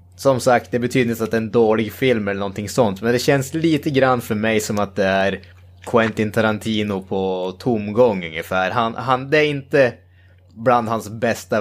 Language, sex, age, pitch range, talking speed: Swedish, male, 20-39, 95-120 Hz, 195 wpm